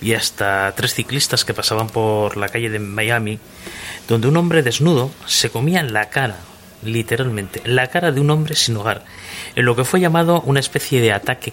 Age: 30-49